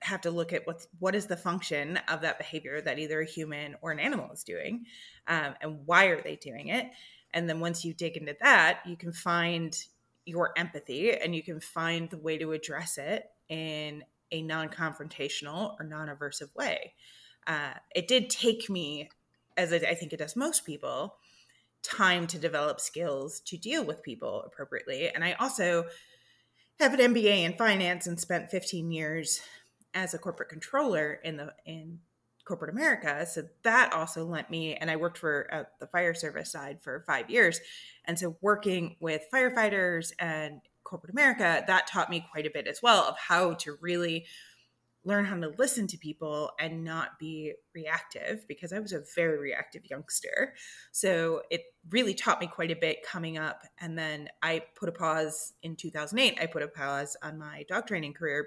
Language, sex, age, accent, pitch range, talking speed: English, female, 30-49, American, 155-185 Hz, 185 wpm